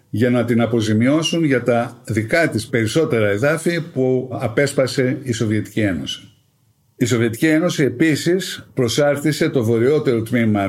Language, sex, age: Greek, male, 50-69